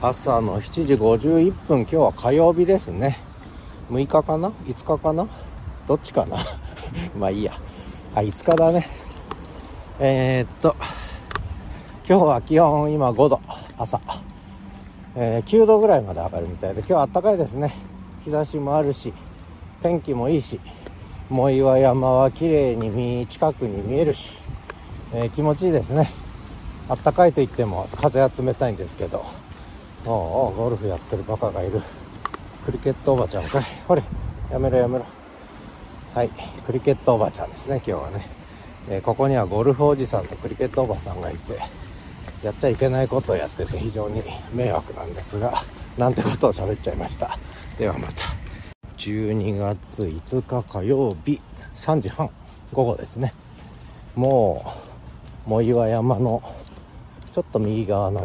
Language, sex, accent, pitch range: Japanese, male, native, 95-135 Hz